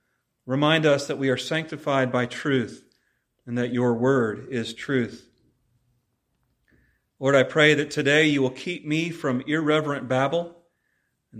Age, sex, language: 40-59, male, English